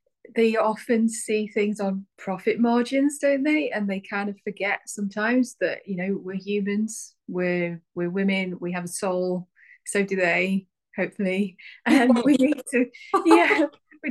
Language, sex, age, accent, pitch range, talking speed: English, female, 20-39, British, 180-215 Hz, 155 wpm